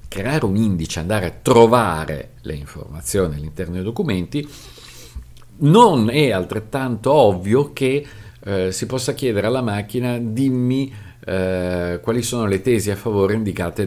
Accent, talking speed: native, 135 wpm